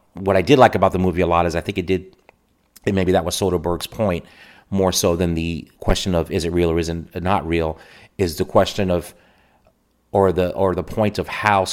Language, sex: English, male